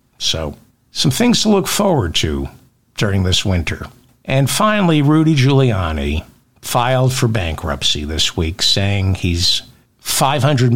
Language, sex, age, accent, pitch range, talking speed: English, male, 60-79, American, 100-130 Hz, 125 wpm